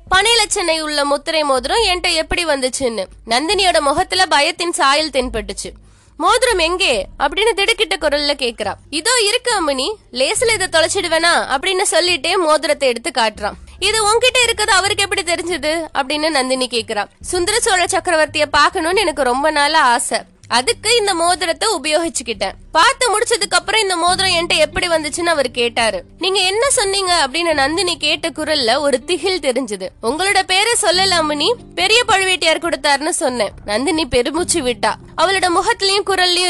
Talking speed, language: 135 wpm, Tamil